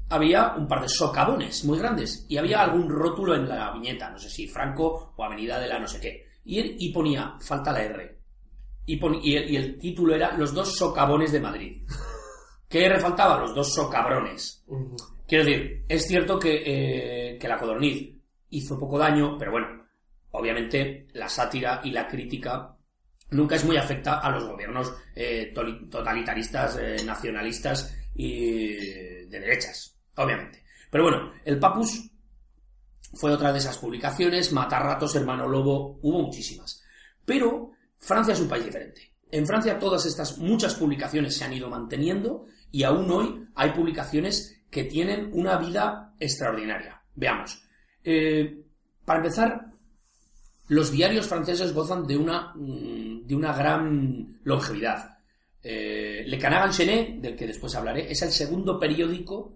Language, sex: Spanish, male